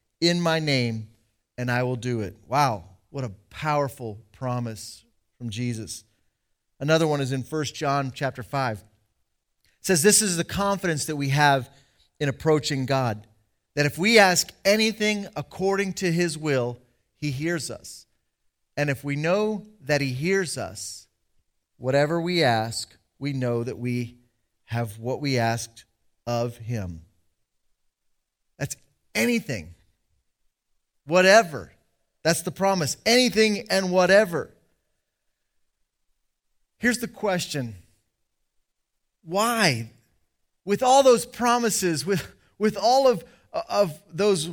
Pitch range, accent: 120-195 Hz, American